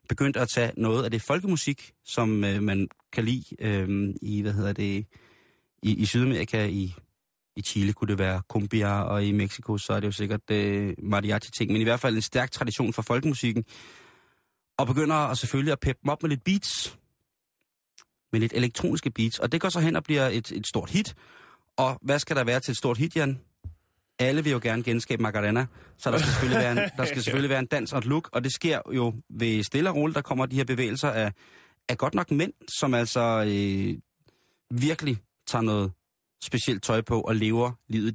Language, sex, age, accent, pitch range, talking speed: Danish, male, 30-49, native, 105-140 Hz, 200 wpm